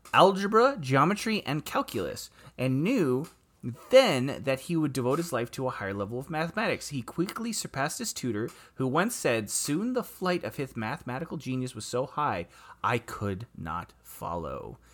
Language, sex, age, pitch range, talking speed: English, male, 30-49, 120-175 Hz, 165 wpm